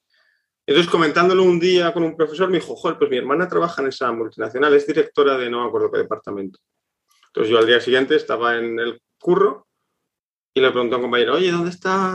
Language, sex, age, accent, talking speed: Spanish, male, 30-49, Spanish, 210 wpm